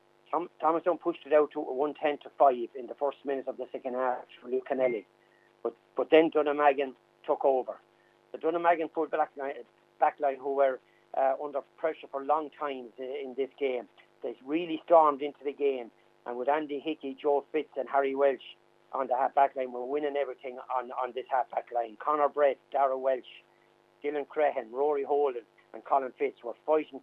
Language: English